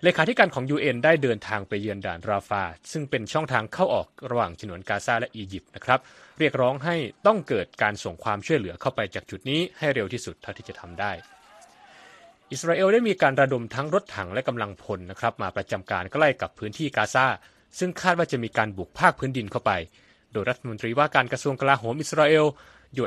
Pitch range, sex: 105-140 Hz, male